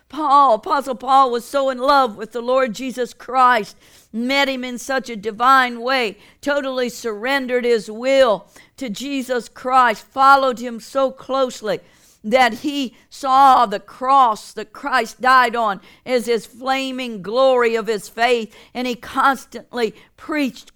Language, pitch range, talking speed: English, 230-265 Hz, 145 wpm